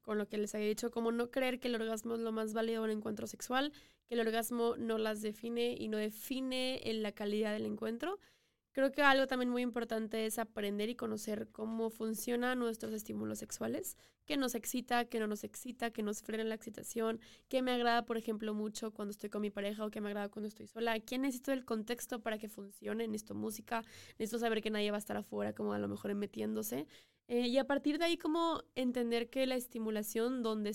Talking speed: 220 wpm